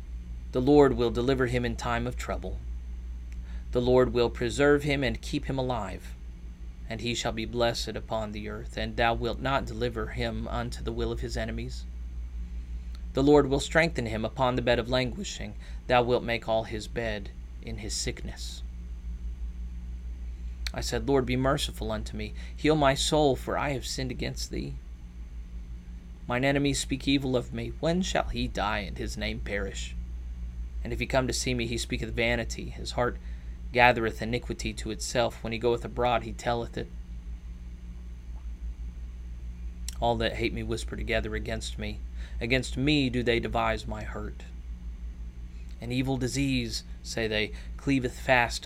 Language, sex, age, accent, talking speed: English, male, 30-49, American, 165 wpm